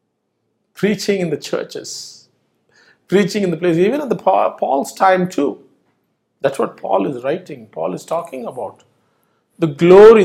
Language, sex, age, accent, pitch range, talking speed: English, male, 50-69, Indian, 150-210 Hz, 145 wpm